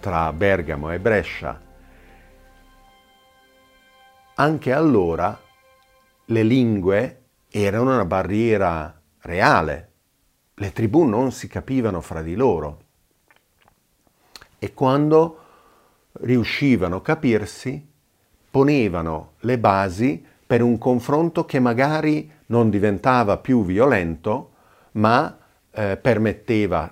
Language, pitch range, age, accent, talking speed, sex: Italian, 85-130 Hz, 50-69, native, 90 wpm, male